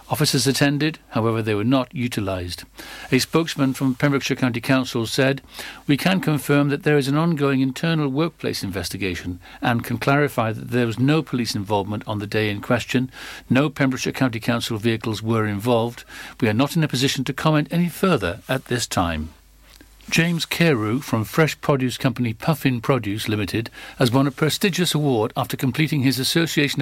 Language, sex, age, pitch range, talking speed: English, male, 60-79, 120-145 Hz, 170 wpm